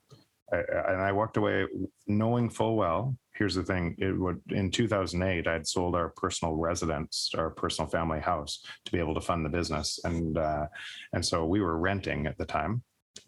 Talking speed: 185 wpm